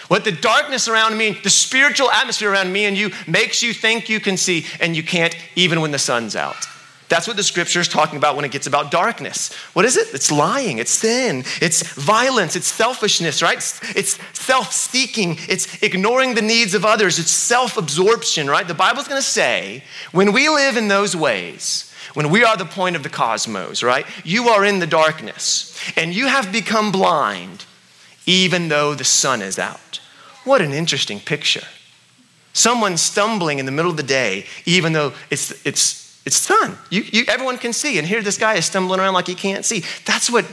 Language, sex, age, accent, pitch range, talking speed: English, male, 30-49, American, 165-225 Hz, 195 wpm